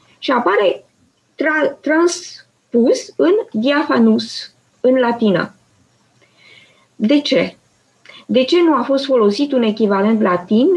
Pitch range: 210-290 Hz